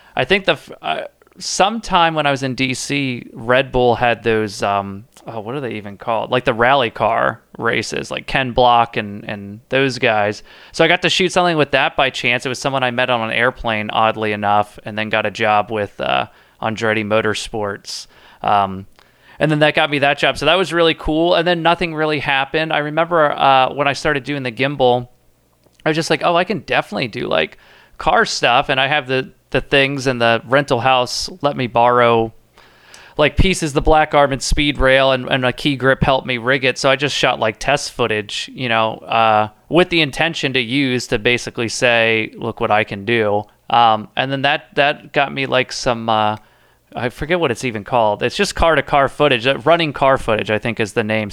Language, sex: English, male